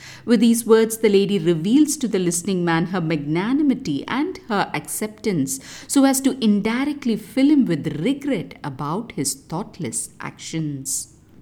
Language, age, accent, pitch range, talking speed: English, 50-69, Indian, 150-245 Hz, 140 wpm